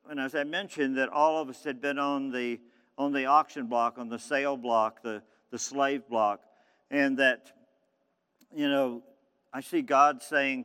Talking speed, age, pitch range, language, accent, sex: 180 wpm, 50-69, 120-165 Hz, English, American, male